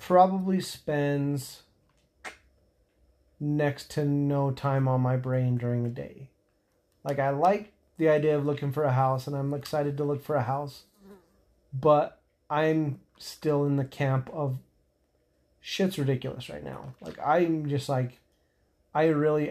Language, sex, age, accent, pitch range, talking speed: English, male, 30-49, American, 130-150 Hz, 145 wpm